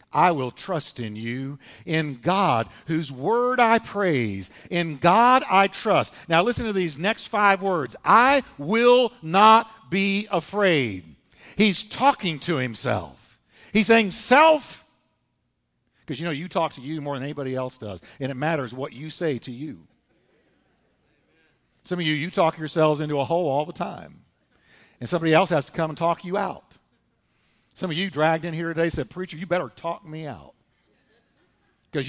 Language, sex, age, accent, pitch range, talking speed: English, male, 50-69, American, 140-210 Hz, 170 wpm